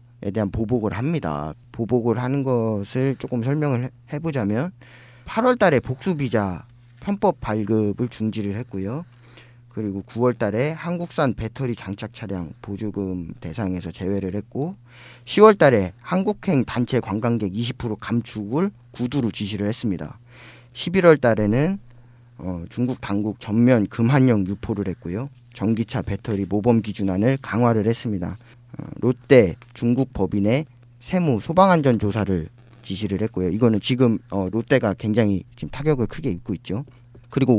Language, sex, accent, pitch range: Korean, male, native, 105-130 Hz